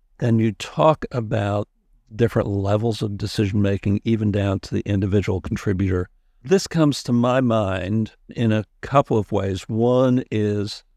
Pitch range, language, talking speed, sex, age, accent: 100-120 Hz, English, 140 wpm, male, 60-79, American